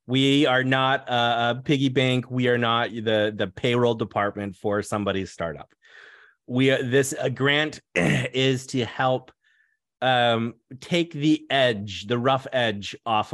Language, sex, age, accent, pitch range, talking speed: English, male, 30-49, American, 110-140 Hz, 140 wpm